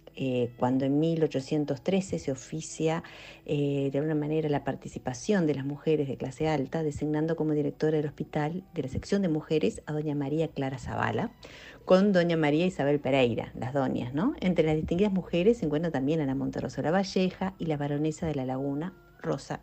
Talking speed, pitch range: 180 wpm, 150-185 Hz